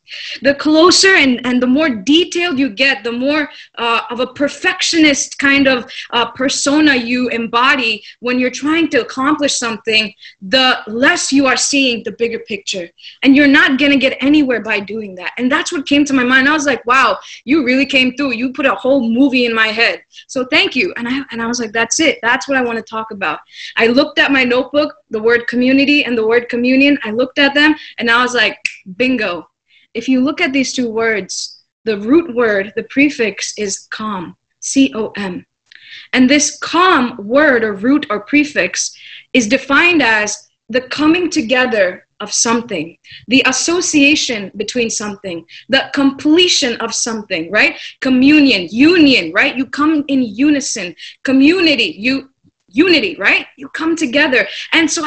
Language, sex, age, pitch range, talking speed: English, female, 20-39, 230-290 Hz, 180 wpm